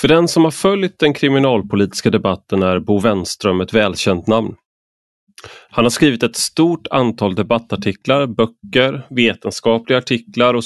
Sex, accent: male, native